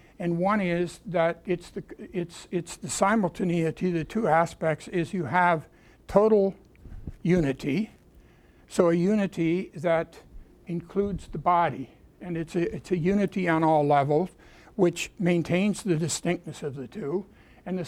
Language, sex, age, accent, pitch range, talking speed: English, male, 60-79, American, 165-190 Hz, 145 wpm